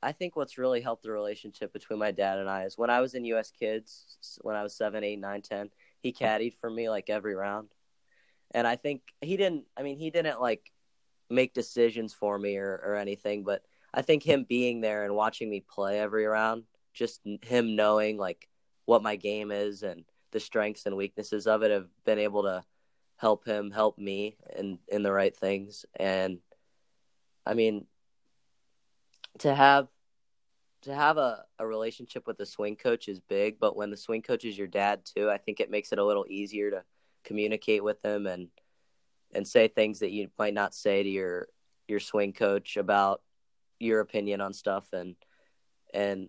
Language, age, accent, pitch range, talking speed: English, 20-39, American, 100-110 Hz, 195 wpm